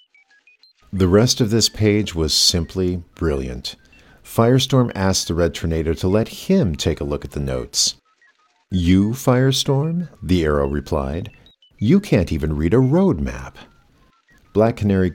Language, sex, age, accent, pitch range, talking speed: English, male, 50-69, American, 80-135 Hz, 145 wpm